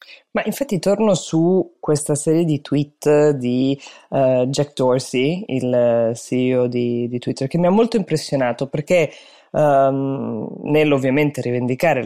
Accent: native